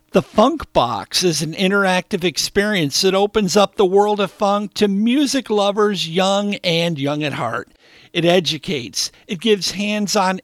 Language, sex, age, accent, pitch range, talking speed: English, male, 50-69, American, 160-205 Hz, 155 wpm